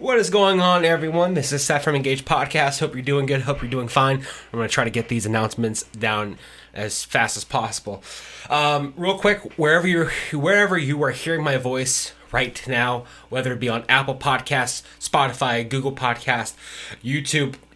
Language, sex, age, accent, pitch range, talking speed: English, male, 20-39, American, 120-150 Hz, 185 wpm